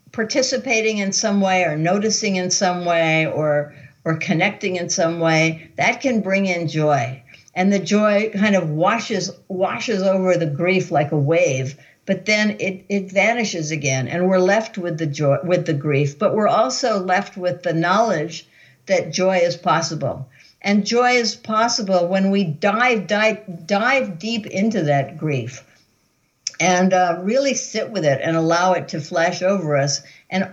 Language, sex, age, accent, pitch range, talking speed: English, female, 60-79, American, 150-195 Hz, 170 wpm